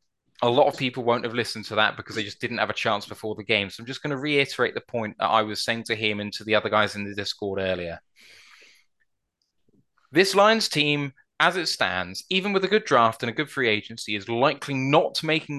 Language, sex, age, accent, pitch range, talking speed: English, male, 10-29, British, 110-160 Hz, 240 wpm